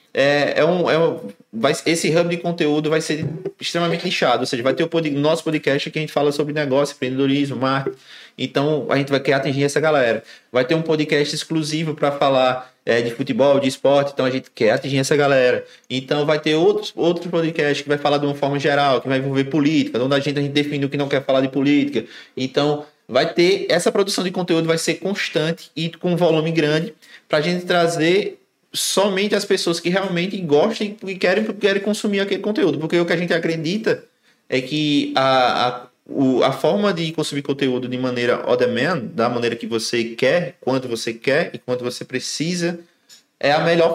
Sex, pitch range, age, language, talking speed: male, 135-170 Hz, 20-39, Portuguese, 210 wpm